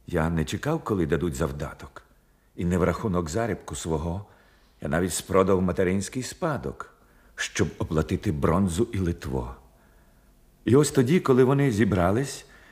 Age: 50-69